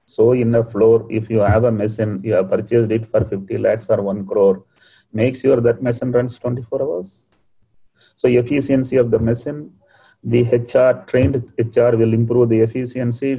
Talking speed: 175 wpm